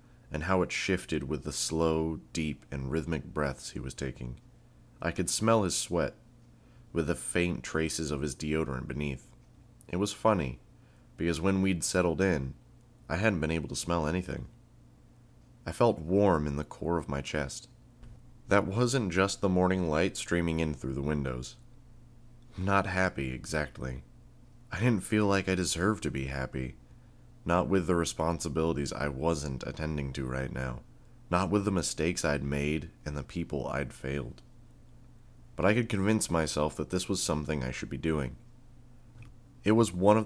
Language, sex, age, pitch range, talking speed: English, male, 20-39, 75-105 Hz, 165 wpm